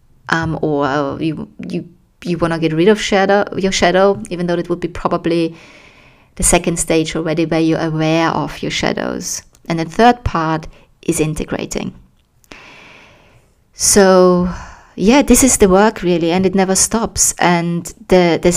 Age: 20-39